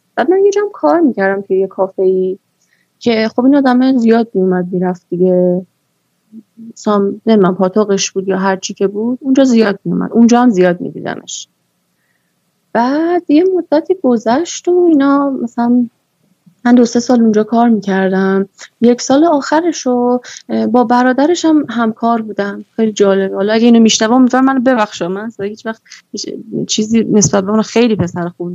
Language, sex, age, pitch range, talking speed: Persian, female, 20-39, 195-255 Hz, 160 wpm